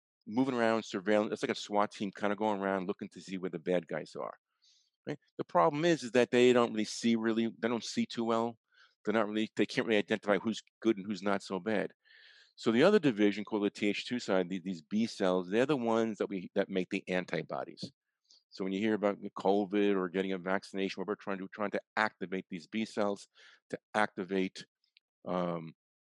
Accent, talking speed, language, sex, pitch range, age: American, 215 wpm, English, male, 95-115 Hz, 50-69